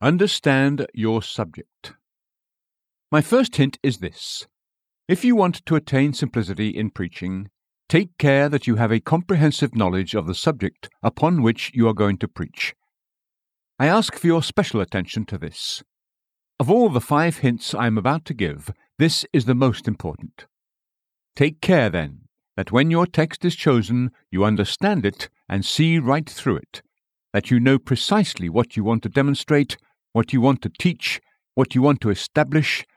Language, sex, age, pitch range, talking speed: English, male, 60-79, 110-150 Hz, 170 wpm